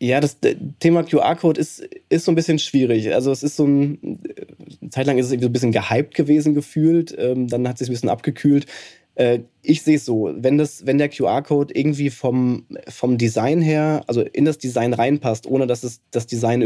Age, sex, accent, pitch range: 20-39, male, German, 120-145 Hz